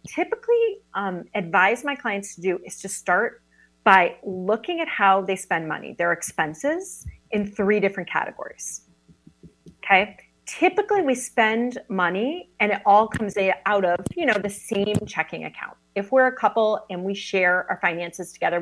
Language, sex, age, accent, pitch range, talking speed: English, female, 30-49, American, 175-250 Hz, 160 wpm